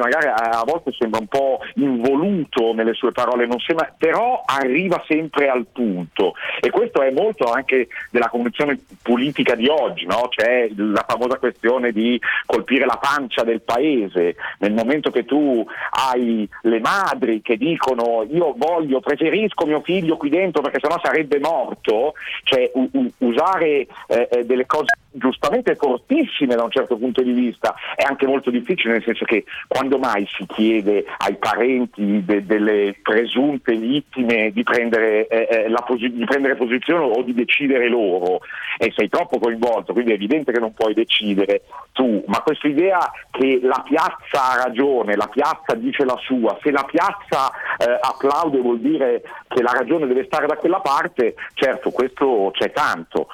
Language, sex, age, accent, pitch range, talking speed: Italian, male, 40-59, native, 115-155 Hz, 160 wpm